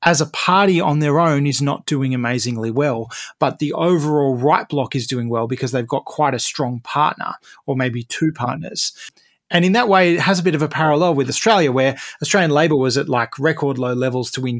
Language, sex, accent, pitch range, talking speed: English, male, Australian, 130-160 Hz, 220 wpm